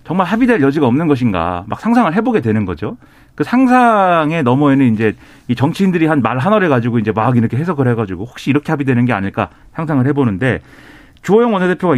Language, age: Korean, 40-59